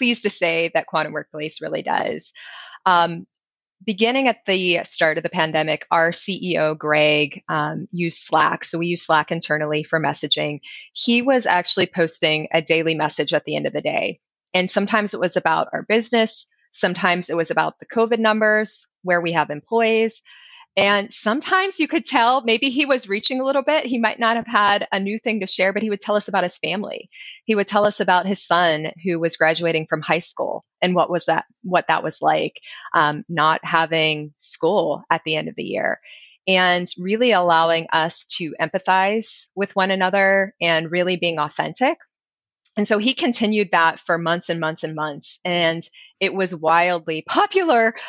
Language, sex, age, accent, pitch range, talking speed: English, female, 20-39, American, 165-215 Hz, 185 wpm